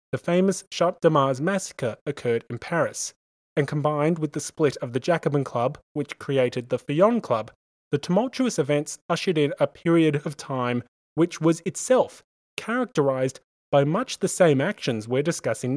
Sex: male